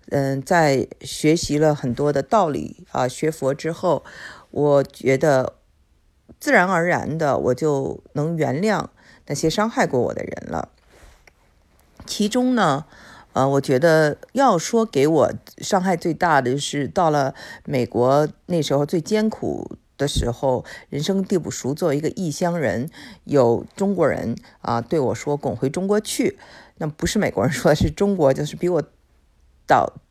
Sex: female